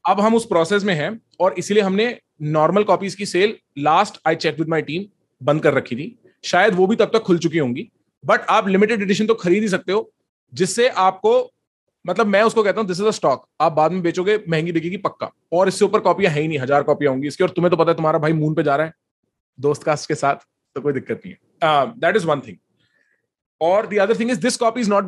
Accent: native